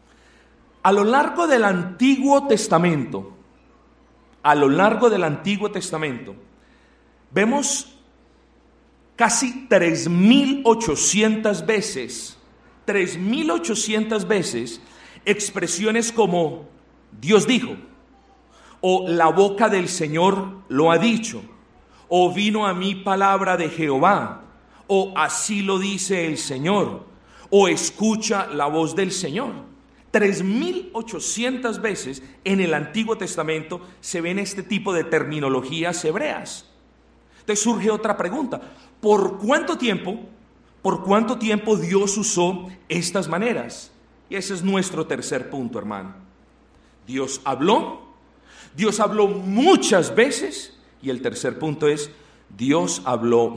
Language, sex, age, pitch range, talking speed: Spanish, male, 40-59, 155-220 Hz, 110 wpm